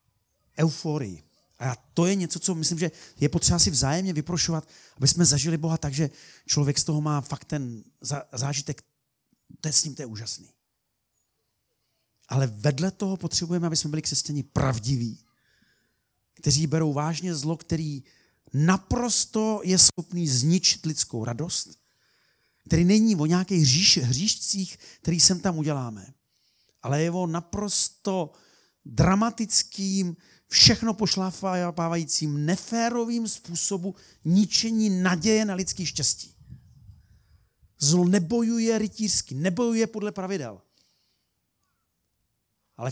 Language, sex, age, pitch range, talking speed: Czech, male, 40-59, 125-180 Hz, 115 wpm